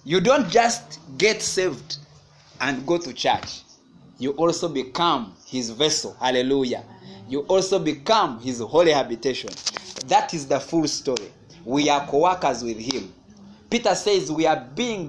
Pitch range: 135-190 Hz